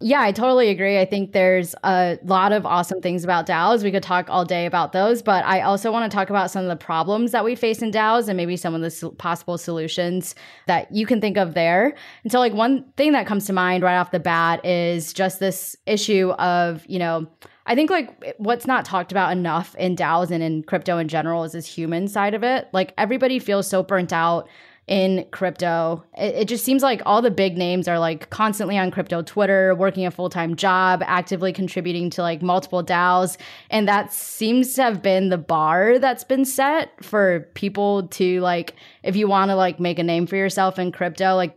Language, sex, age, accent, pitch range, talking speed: English, female, 10-29, American, 175-205 Hz, 220 wpm